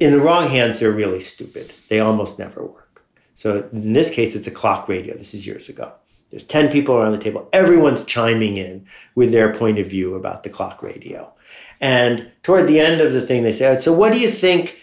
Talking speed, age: 225 wpm, 50-69